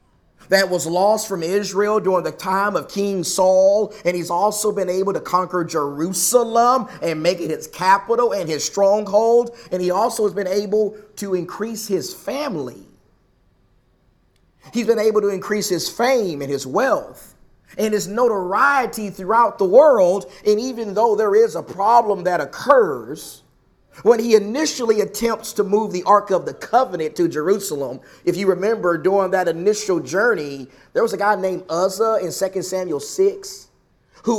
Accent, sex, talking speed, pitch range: American, male, 160 wpm, 180-220 Hz